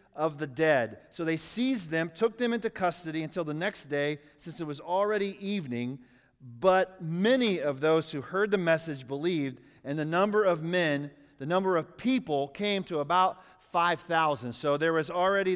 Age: 40-59